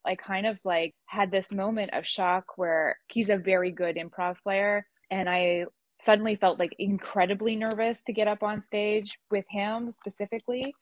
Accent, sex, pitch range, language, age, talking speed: American, female, 175-210 Hz, English, 20-39, 170 wpm